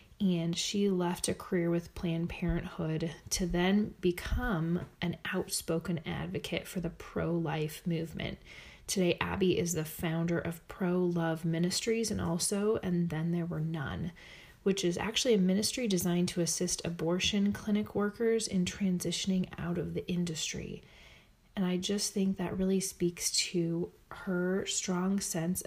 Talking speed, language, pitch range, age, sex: 145 wpm, English, 170-195 Hz, 30-49, female